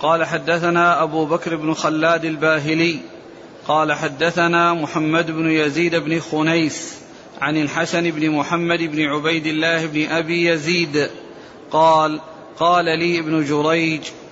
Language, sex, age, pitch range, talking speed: Arabic, male, 40-59, 160-175 Hz, 120 wpm